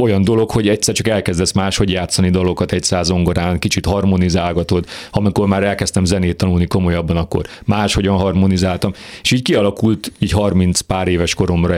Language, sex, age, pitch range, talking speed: Hungarian, male, 40-59, 90-110 Hz, 155 wpm